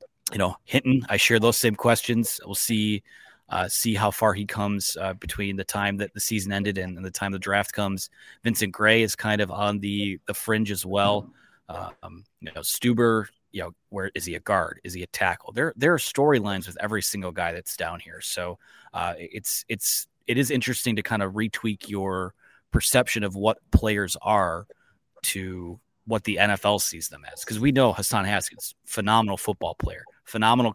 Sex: male